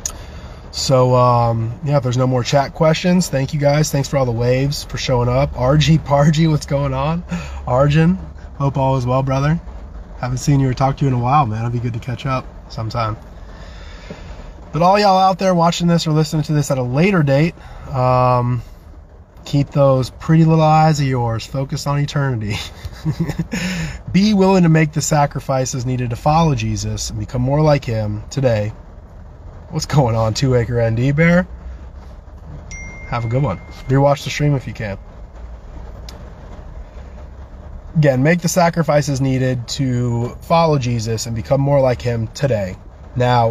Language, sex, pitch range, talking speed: English, male, 110-150 Hz, 170 wpm